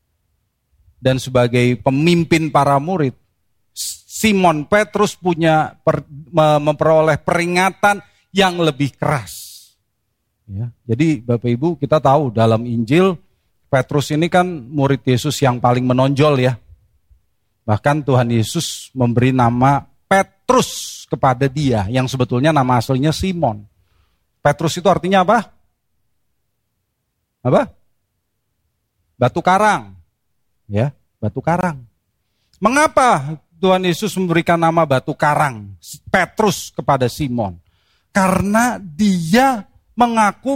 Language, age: Indonesian, 40-59